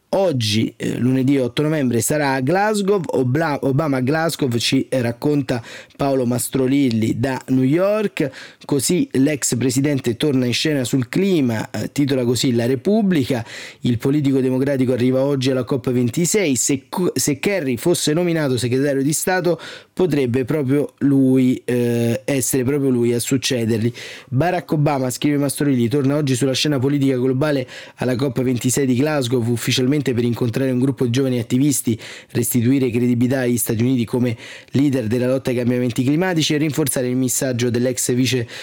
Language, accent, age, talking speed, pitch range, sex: Italian, native, 30-49, 150 wpm, 125-140 Hz, male